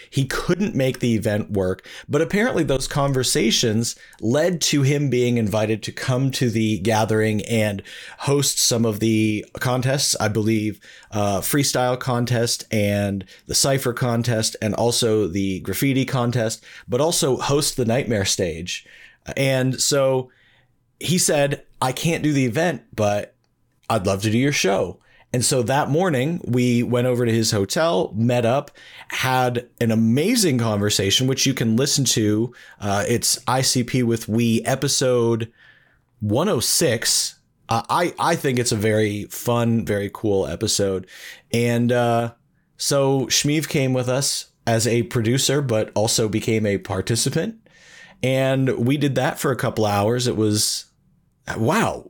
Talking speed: 145 wpm